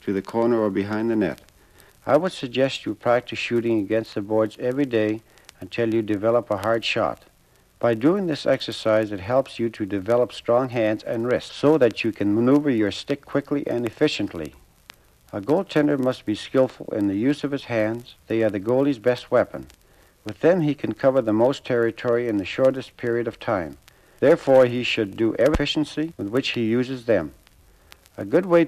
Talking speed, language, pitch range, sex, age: 195 wpm, English, 110-130 Hz, male, 60-79